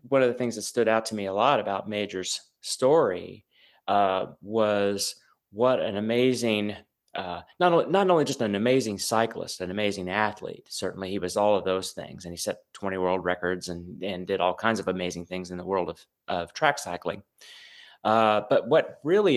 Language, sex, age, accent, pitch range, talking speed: English, male, 30-49, American, 100-115 Hz, 195 wpm